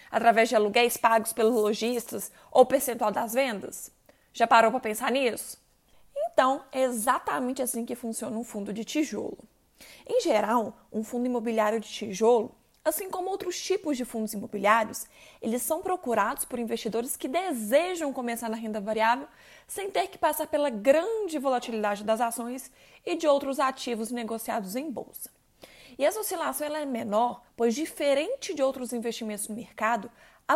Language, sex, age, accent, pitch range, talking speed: Portuguese, female, 20-39, Brazilian, 230-300 Hz, 155 wpm